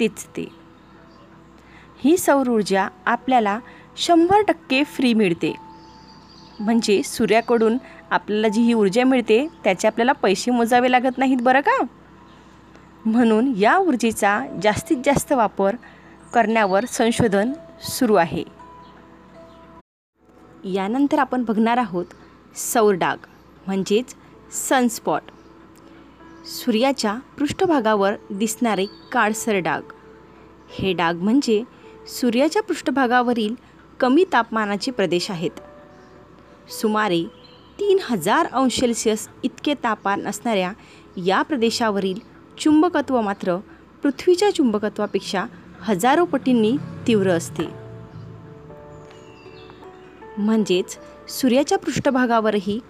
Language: Marathi